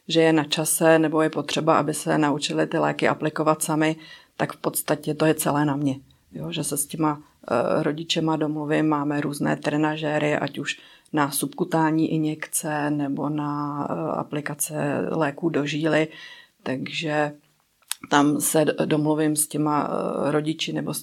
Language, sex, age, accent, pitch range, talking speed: Czech, female, 40-59, native, 150-160 Hz, 150 wpm